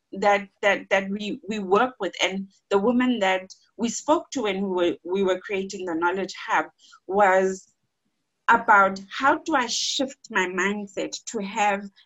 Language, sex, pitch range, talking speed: English, female, 195-255 Hz, 155 wpm